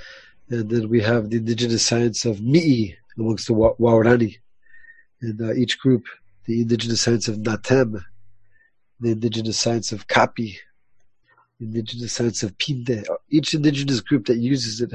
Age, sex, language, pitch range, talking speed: 40-59, male, English, 115-130 Hz, 150 wpm